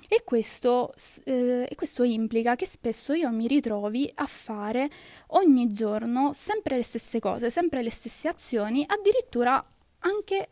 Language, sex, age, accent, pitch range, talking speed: Italian, female, 20-39, native, 225-290 Hz, 135 wpm